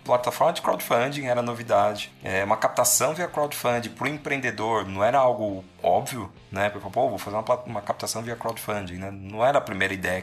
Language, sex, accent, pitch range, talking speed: Portuguese, male, Brazilian, 100-125 Hz, 195 wpm